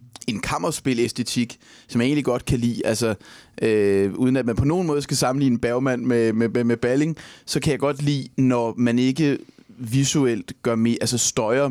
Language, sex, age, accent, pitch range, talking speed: English, male, 30-49, Danish, 110-130 Hz, 195 wpm